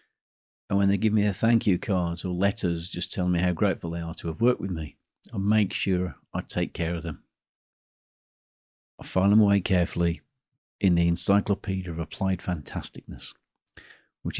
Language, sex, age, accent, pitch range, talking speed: English, male, 50-69, British, 80-105 Hz, 180 wpm